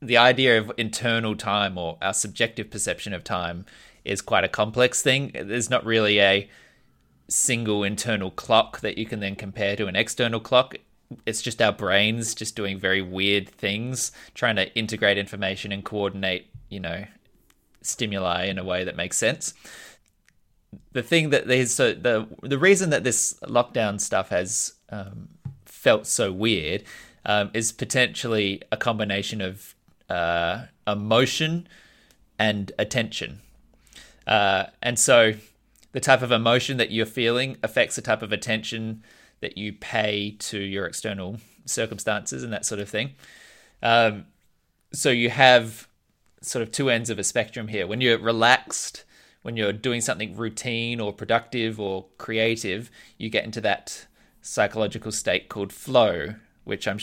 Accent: Australian